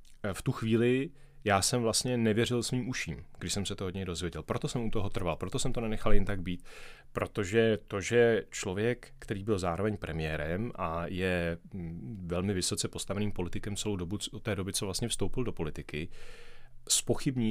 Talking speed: 180 wpm